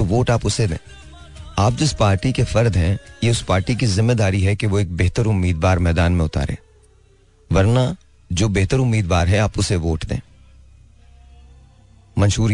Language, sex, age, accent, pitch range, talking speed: Hindi, male, 40-59, native, 90-110 Hz, 165 wpm